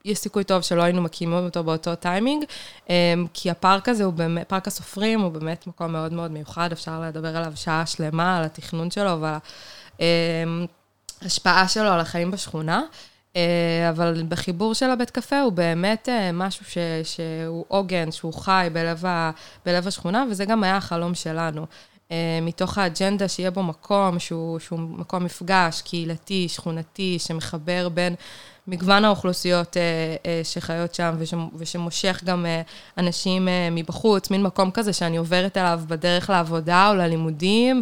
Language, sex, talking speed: Hebrew, female, 140 wpm